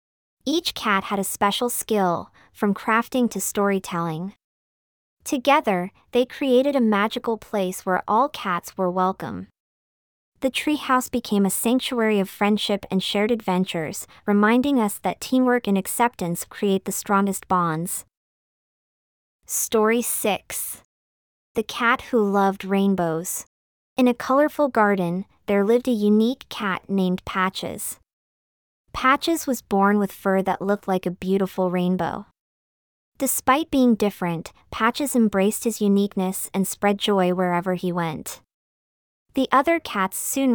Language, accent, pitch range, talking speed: English, American, 190-235 Hz, 130 wpm